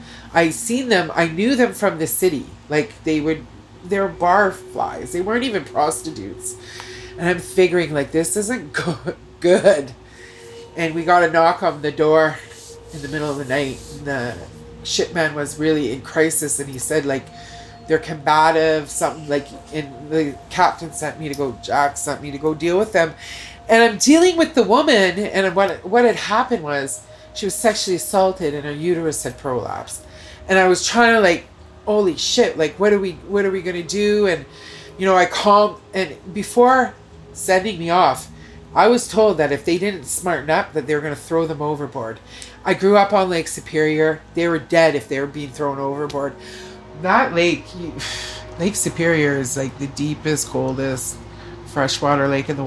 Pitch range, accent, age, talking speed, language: 130-180 Hz, American, 30-49, 190 wpm, French